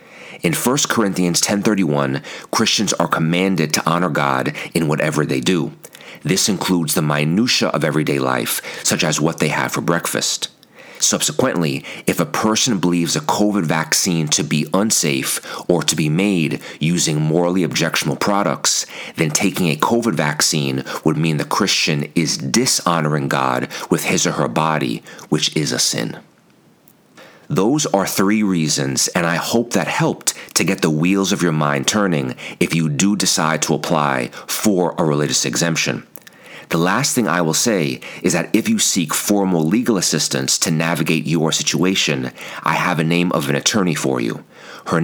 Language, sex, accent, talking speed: English, male, American, 165 wpm